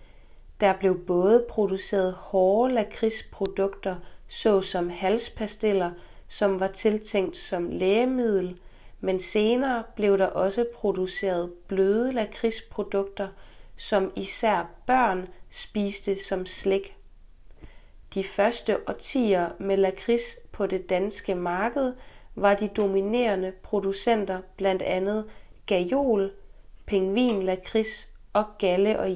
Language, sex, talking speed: Danish, female, 100 wpm